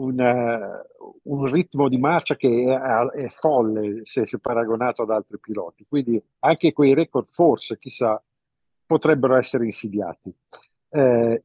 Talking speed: 135 wpm